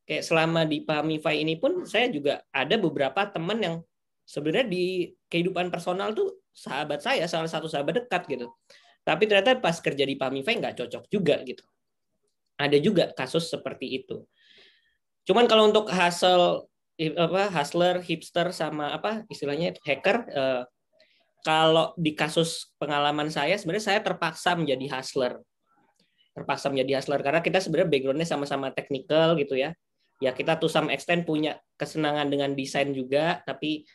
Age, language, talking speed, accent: 20-39, Indonesian, 145 wpm, native